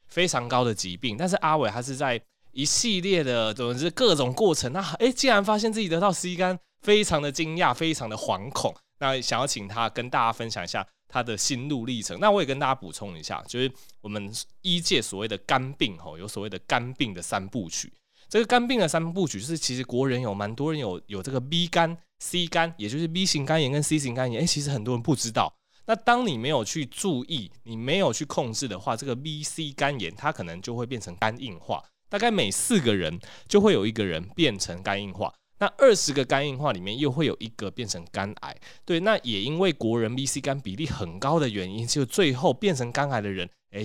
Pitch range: 105-160 Hz